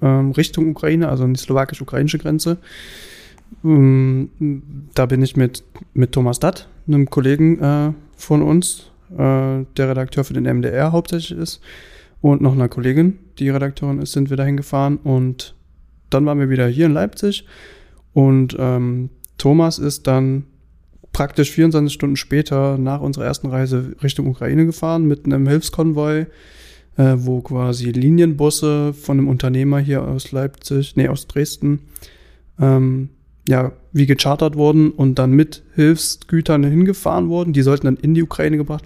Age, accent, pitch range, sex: 20-39, German, 130-155 Hz, male